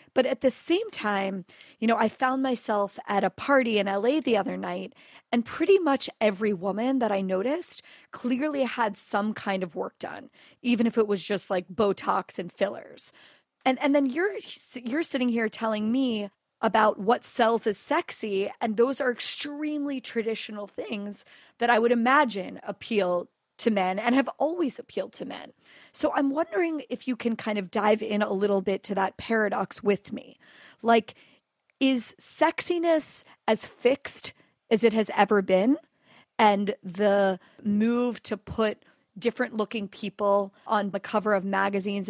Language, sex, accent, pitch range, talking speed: English, female, American, 200-255 Hz, 165 wpm